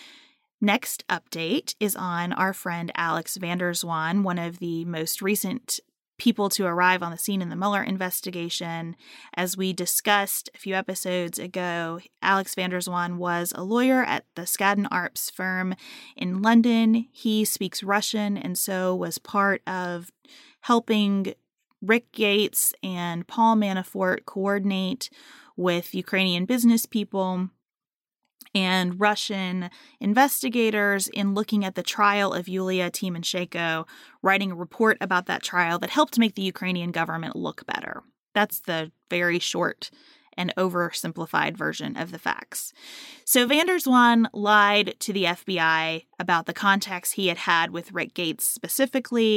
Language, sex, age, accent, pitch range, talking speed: English, female, 30-49, American, 180-225 Hz, 135 wpm